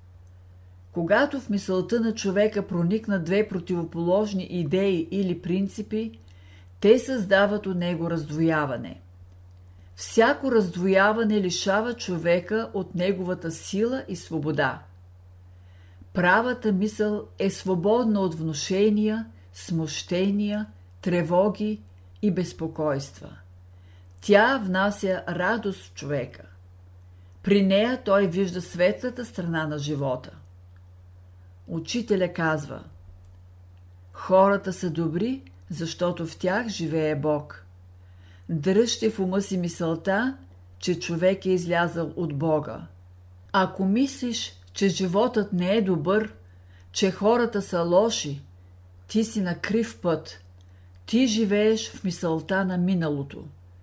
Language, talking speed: Bulgarian, 100 wpm